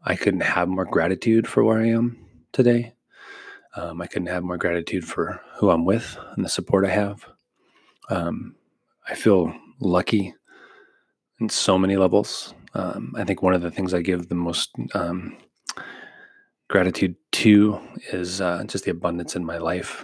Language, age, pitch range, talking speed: English, 30-49, 90-105 Hz, 165 wpm